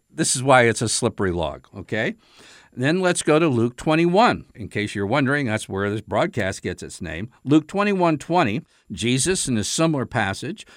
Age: 50-69